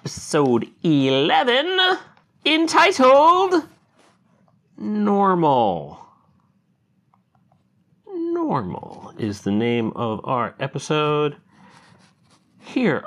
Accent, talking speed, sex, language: American, 55 wpm, male, English